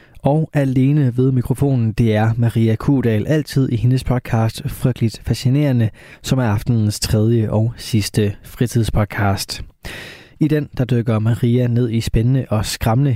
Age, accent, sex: 20-39, native, male